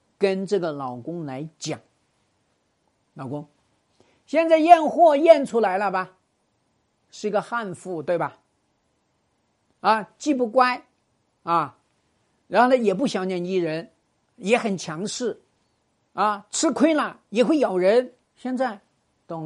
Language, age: Chinese, 50-69